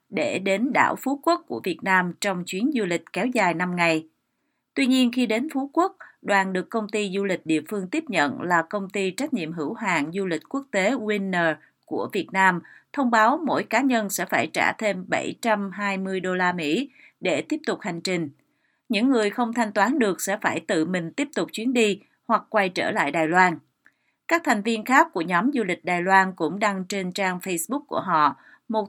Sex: female